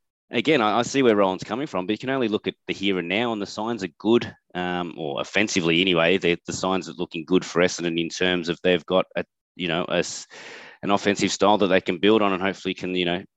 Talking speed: 245 wpm